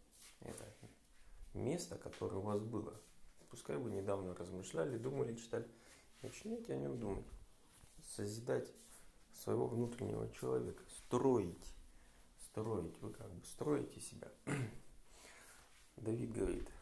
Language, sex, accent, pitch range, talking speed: Russian, male, native, 100-130 Hz, 105 wpm